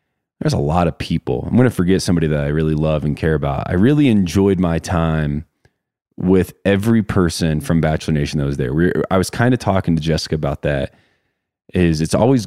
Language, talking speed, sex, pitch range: English, 205 wpm, male, 85-110 Hz